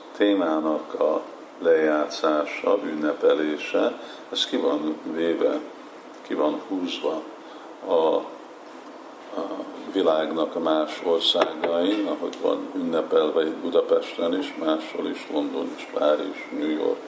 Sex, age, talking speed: male, 50-69, 110 wpm